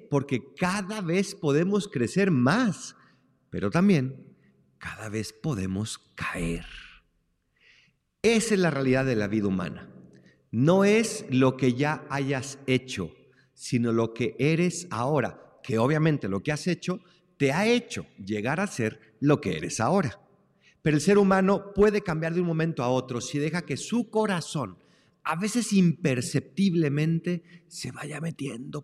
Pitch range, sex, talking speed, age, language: 120-160 Hz, male, 145 wpm, 50-69, Spanish